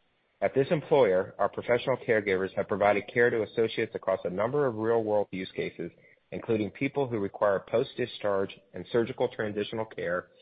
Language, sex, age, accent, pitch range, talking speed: English, male, 40-59, American, 95-115 Hz, 165 wpm